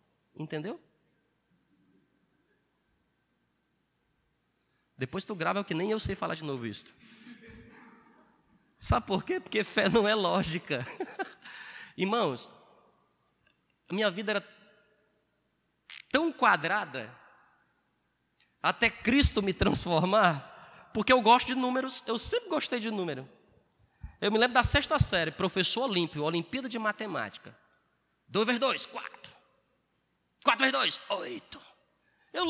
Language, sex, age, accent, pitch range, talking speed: Portuguese, male, 20-39, Brazilian, 195-285 Hz, 115 wpm